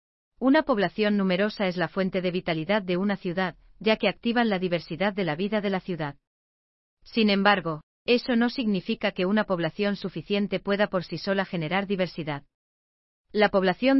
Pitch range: 170-210 Hz